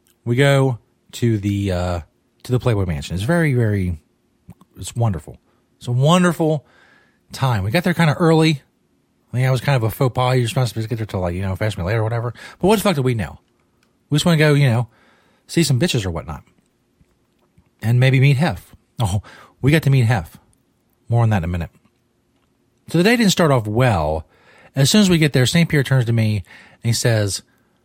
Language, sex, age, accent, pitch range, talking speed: English, male, 40-59, American, 110-150 Hz, 220 wpm